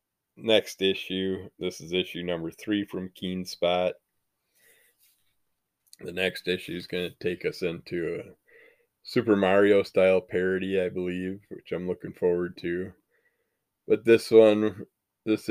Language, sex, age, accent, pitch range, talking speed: English, male, 20-39, American, 90-110 Hz, 130 wpm